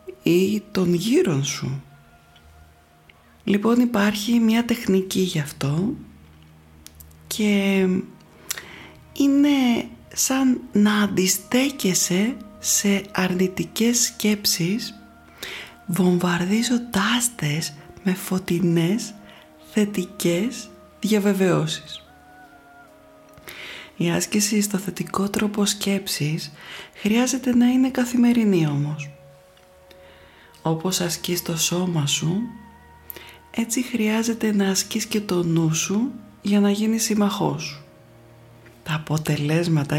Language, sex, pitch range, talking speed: Greek, female, 155-220 Hz, 80 wpm